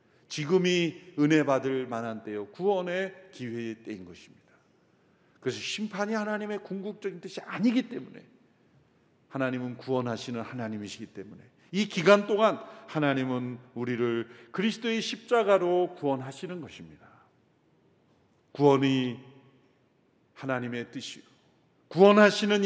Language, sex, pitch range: Korean, male, 130-210 Hz